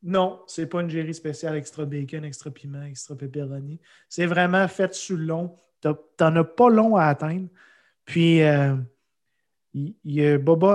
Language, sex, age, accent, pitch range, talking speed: French, male, 30-49, Canadian, 150-185 Hz, 155 wpm